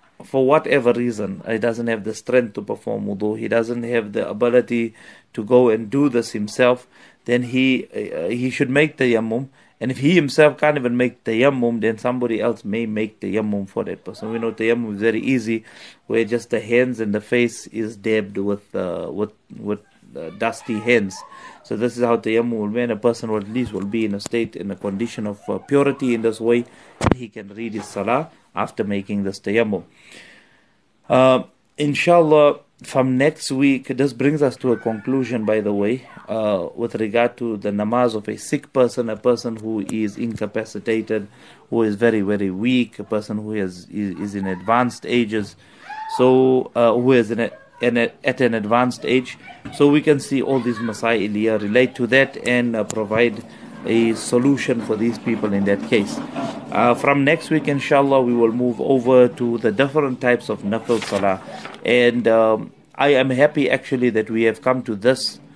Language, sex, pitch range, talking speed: English, male, 110-130 Hz, 195 wpm